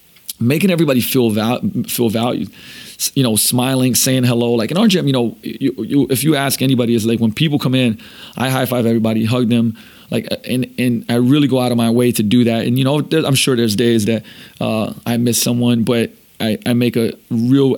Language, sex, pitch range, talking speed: English, male, 115-130 Hz, 225 wpm